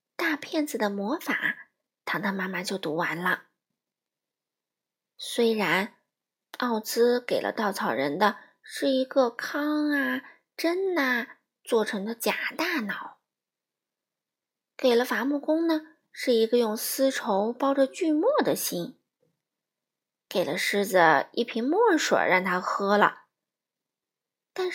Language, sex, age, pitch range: Chinese, female, 20-39, 205-285 Hz